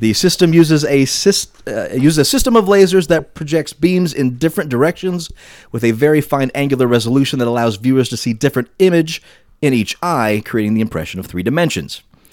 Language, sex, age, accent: English, male, 30-49, American